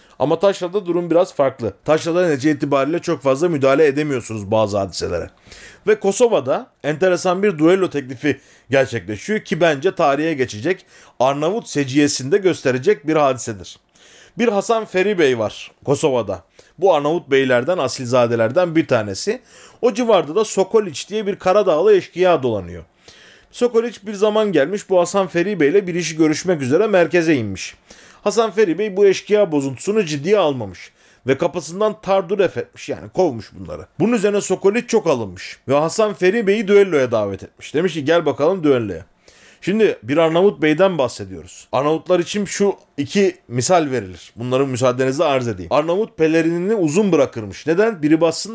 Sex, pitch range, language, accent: male, 130-200 Hz, Turkish, native